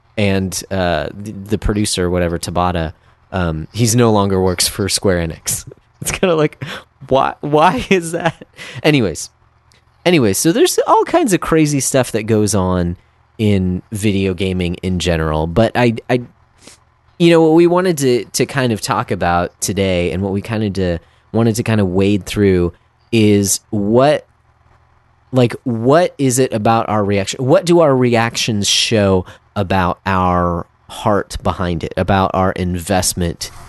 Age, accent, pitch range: 30-49, American, 95-115 Hz